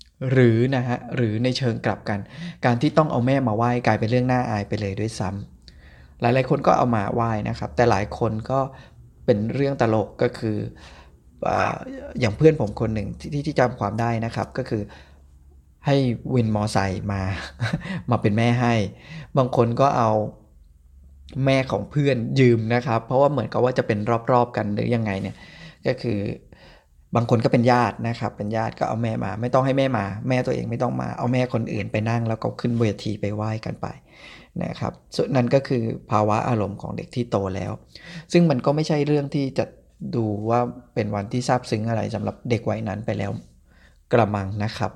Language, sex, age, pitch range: Thai, male, 20-39, 100-125 Hz